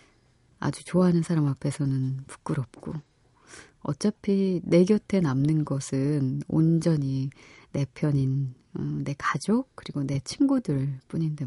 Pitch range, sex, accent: 140-180 Hz, female, native